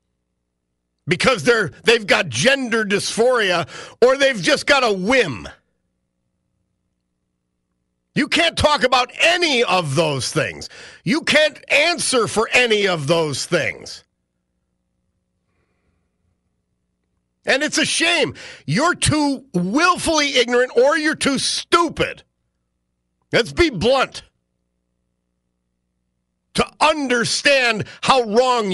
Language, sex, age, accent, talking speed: English, male, 50-69, American, 100 wpm